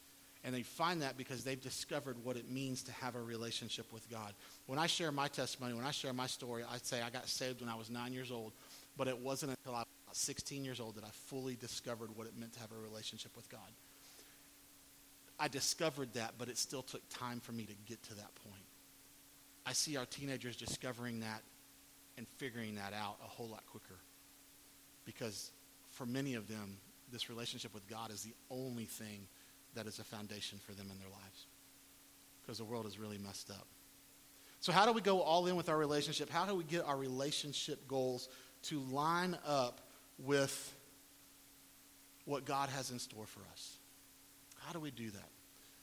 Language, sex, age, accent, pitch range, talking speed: English, male, 40-59, American, 115-140 Hz, 195 wpm